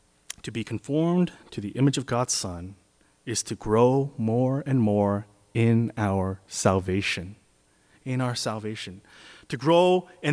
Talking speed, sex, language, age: 140 wpm, male, English, 30-49